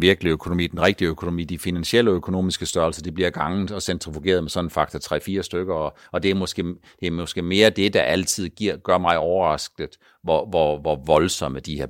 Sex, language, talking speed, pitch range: male, Danish, 215 wpm, 85-110 Hz